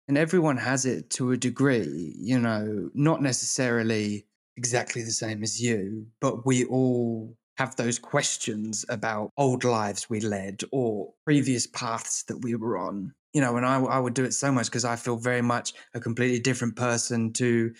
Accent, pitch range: British, 120-145 Hz